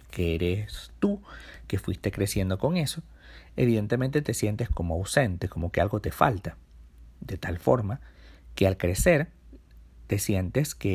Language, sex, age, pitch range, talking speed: Spanish, male, 50-69, 85-130 Hz, 150 wpm